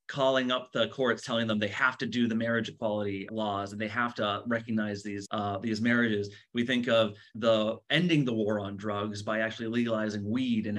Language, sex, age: English, male, 30-49